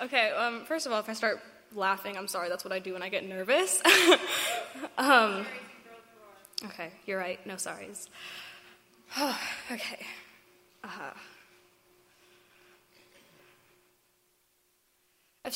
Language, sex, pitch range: English, female, 205-245 Hz